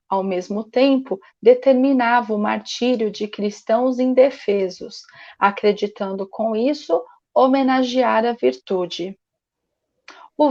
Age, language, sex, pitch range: 40-59, Portuguese, female, 210-270 Hz